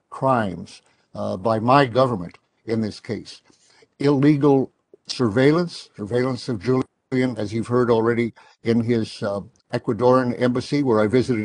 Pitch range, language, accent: 110-130 Hz, English, American